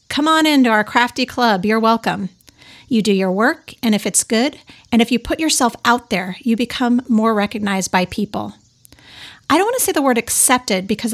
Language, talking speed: English, 205 wpm